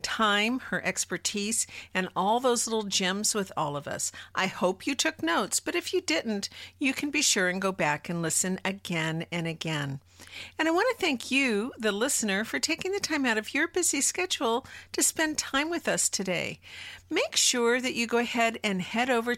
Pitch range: 180-250 Hz